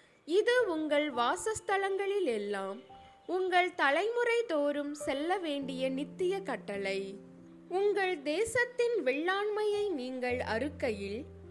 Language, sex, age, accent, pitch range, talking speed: Tamil, female, 20-39, native, 240-370 Hz, 85 wpm